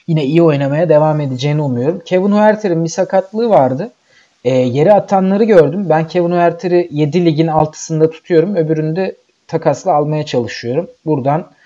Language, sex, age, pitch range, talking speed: Turkish, male, 40-59, 145-180 Hz, 135 wpm